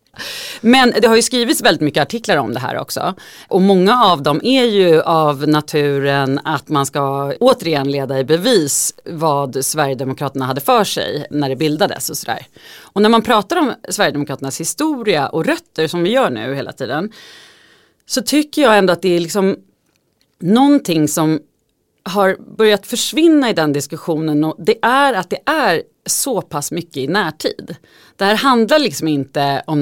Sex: female